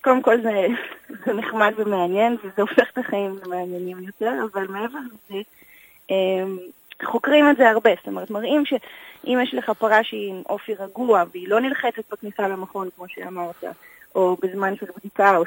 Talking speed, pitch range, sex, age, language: 160 wpm, 190-230 Hz, female, 30-49, Hebrew